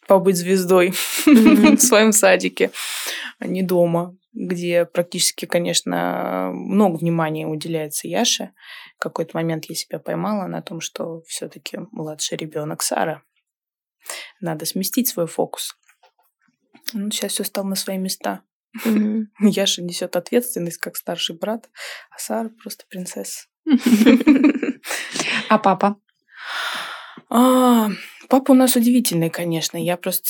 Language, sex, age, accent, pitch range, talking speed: Russian, female, 20-39, native, 175-230 Hz, 110 wpm